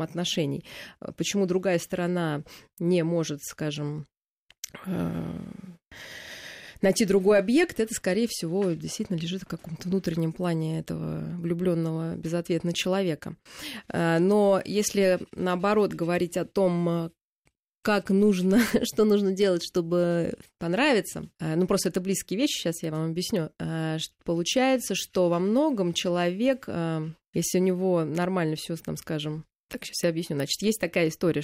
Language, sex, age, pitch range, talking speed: Russian, female, 20-39, 165-200 Hz, 125 wpm